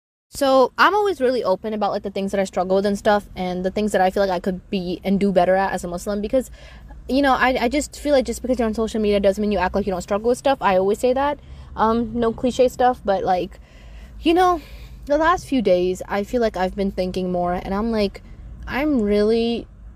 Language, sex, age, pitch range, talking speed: English, female, 20-39, 190-260 Hz, 255 wpm